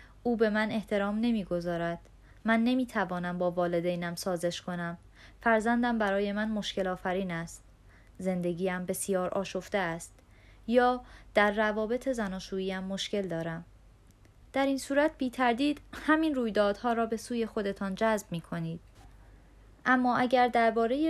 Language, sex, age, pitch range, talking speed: Persian, female, 30-49, 180-225 Hz, 120 wpm